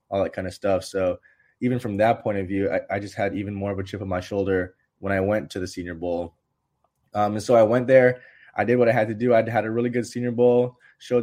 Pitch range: 95-110 Hz